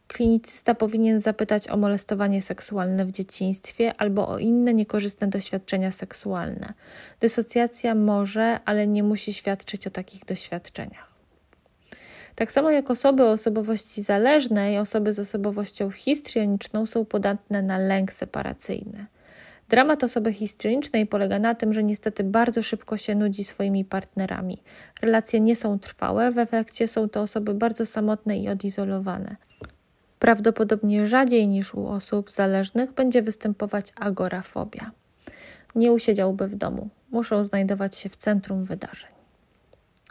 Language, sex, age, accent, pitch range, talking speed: Polish, female, 20-39, native, 200-230 Hz, 125 wpm